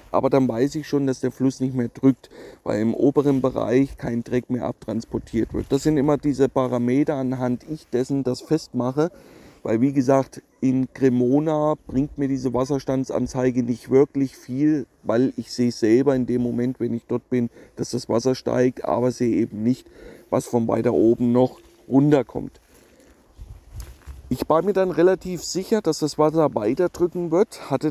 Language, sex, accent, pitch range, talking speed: German, male, German, 125-150 Hz, 170 wpm